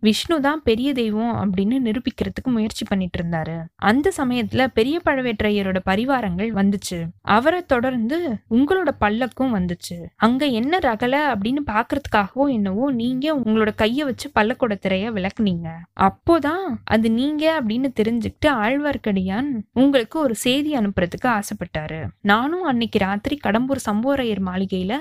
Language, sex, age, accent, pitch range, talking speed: Tamil, female, 20-39, native, 205-275 Hz, 110 wpm